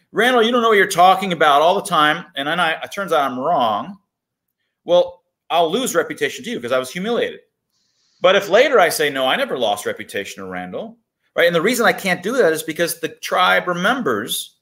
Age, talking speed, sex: 30-49, 220 wpm, male